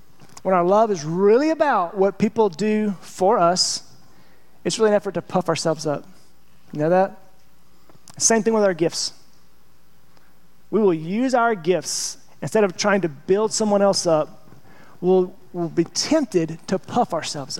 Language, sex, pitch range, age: English, male, 170-220 Hz, 30-49